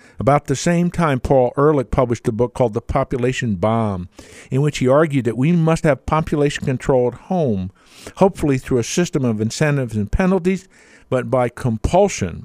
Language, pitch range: English, 110-150 Hz